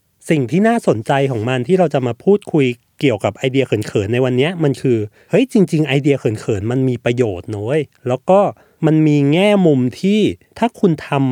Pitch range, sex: 120-165 Hz, male